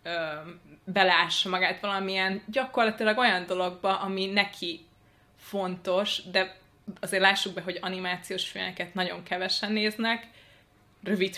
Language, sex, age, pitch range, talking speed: Hungarian, female, 20-39, 170-195 Hz, 105 wpm